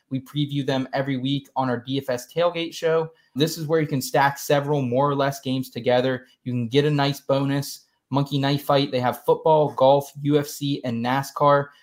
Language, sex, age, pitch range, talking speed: English, male, 20-39, 125-145 Hz, 195 wpm